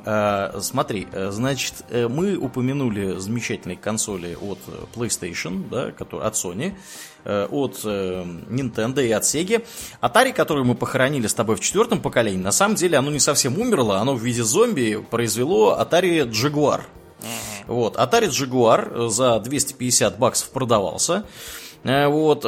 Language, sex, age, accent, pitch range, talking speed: Russian, male, 20-39, native, 100-135 Hz, 120 wpm